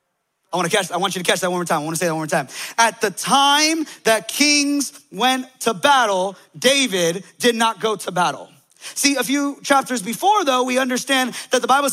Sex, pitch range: male, 220-280 Hz